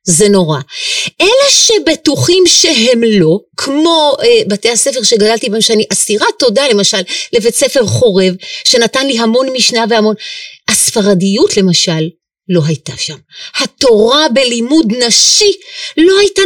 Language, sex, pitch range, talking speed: Hebrew, female, 195-320 Hz, 125 wpm